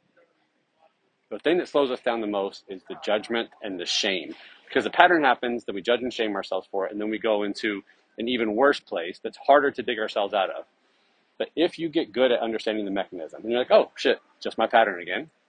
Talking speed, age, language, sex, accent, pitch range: 235 wpm, 30-49, English, male, American, 105-130 Hz